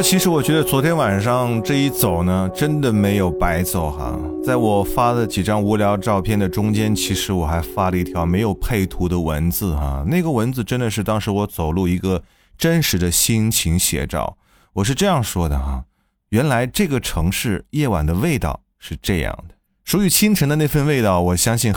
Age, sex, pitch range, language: 20-39, male, 85-120 Hz, Chinese